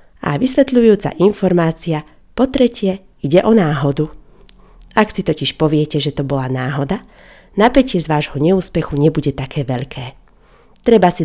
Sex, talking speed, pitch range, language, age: female, 135 wpm, 145-190 Hz, Slovak, 30-49